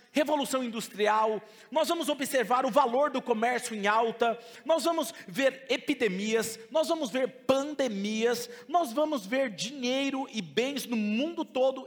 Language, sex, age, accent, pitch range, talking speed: Portuguese, male, 40-59, Brazilian, 220-290 Hz, 140 wpm